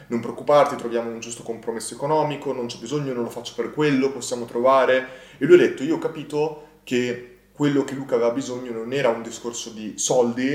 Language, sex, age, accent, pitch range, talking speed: Italian, male, 20-39, native, 120-160 Hz, 205 wpm